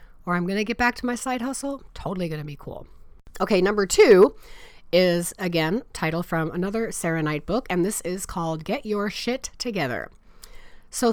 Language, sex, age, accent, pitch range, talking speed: English, female, 30-49, American, 160-225 Hz, 180 wpm